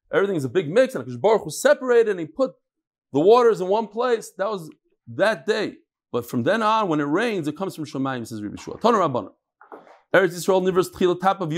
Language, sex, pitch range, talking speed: English, male, 150-215 Hz, 200 wpm